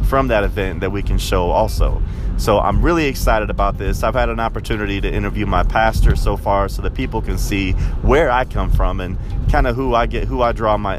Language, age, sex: English, 30-49, male